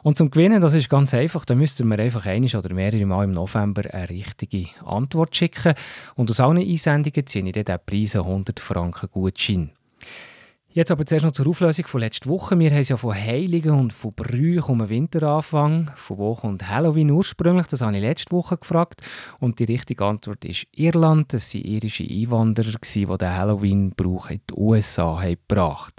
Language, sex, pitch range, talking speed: German, male, 105-140 Hz, 190 wpm